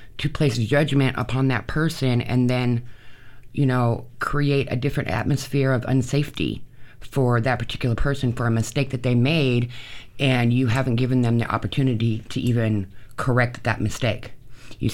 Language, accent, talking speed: English, American, 155 wpm